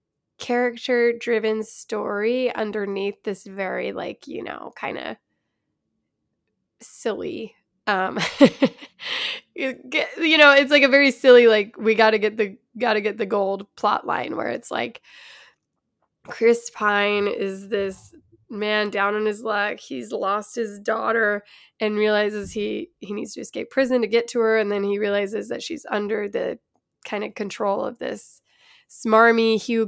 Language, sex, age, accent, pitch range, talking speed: English, female, 10-29, American, 200-235 Hz, 155 wpm